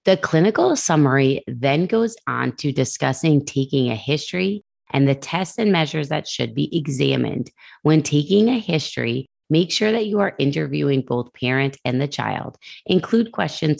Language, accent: English, American